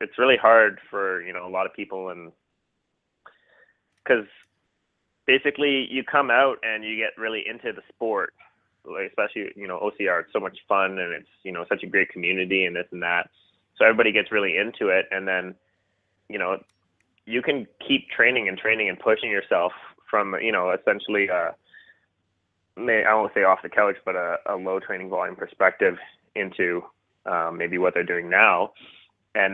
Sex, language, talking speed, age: male, English, 175 wpm, 20-39